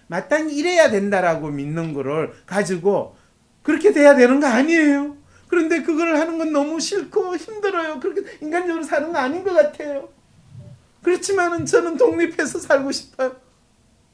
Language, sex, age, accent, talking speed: English, male, 40-59, Korean, 125 wpm